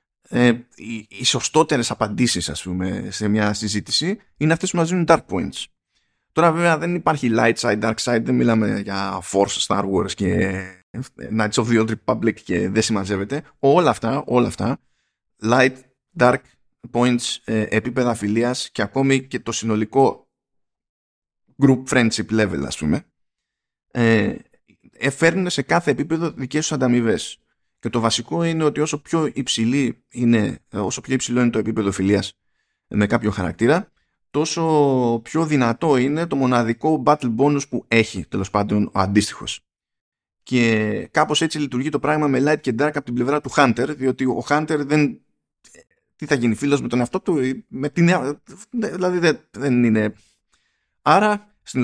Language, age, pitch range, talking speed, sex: Greek, 20-39, 110-145 Hz, 150 wpm, male